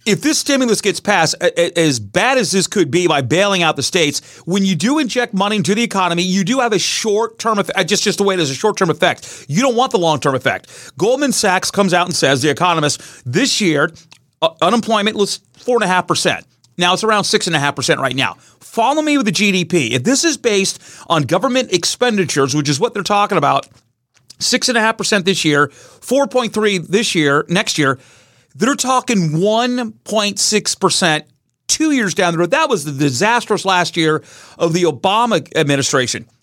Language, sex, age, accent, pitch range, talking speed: English, male, 30-49, American, 160-220 Hz, 175 wpm